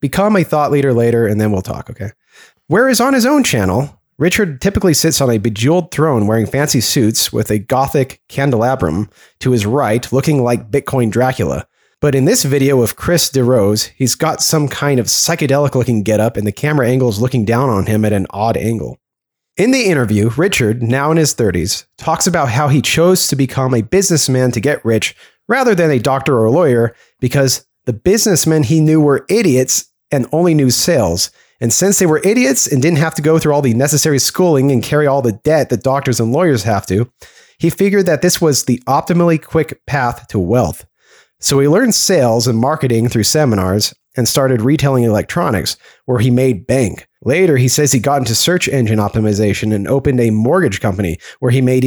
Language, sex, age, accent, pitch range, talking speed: English, male, 30-49, American, 115-150 Hz, 200 wpm